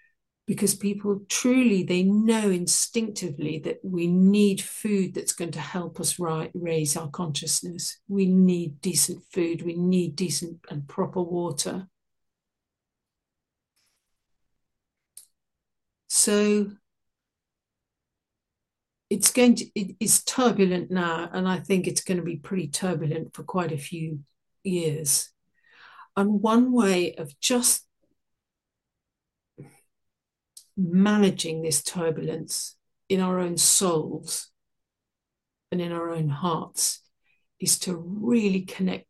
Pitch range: 165-195 Hz